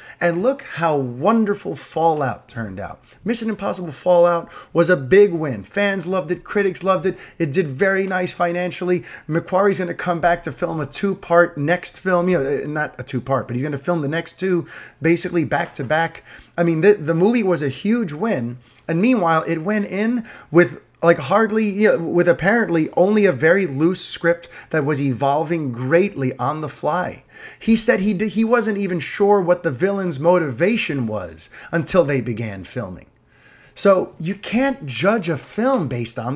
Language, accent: English, American